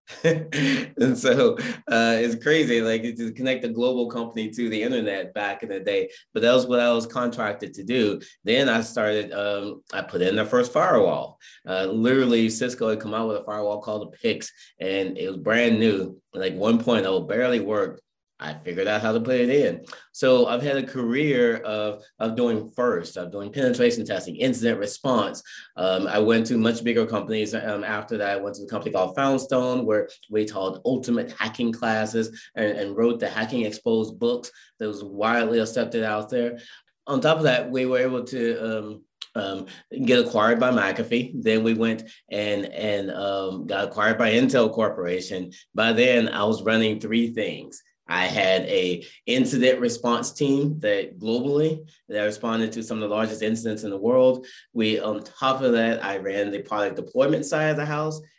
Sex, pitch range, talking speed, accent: male, 105-130 Hz, 190 wpm, American